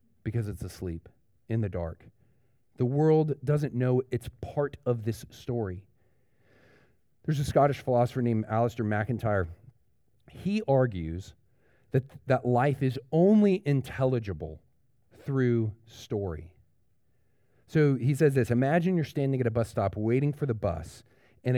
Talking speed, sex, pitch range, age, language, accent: 135 wpm, male, 110-140 Hz, 40-59, English, American